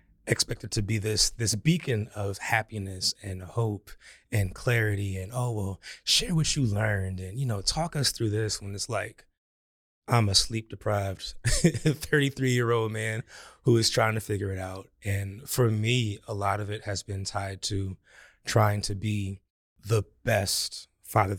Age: 20-39